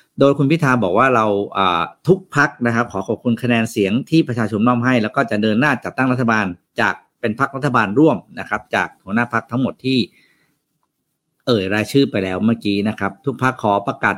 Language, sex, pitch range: Thai, male, 100-130 Hz